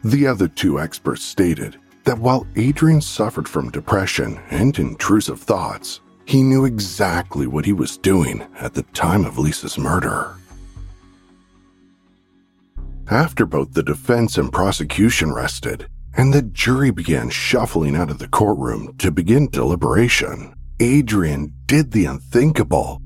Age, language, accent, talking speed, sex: 50-69, English, American, 130 wpm, male